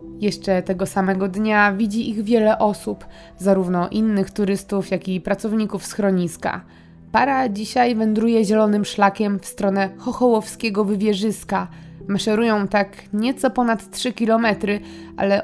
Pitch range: 190-225 Hz